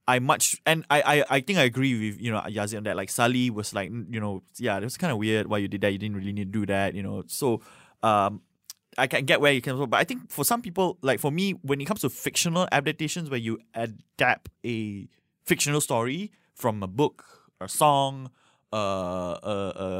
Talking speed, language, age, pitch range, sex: 235 wpm, English, 20-39, 100-130 Hz, male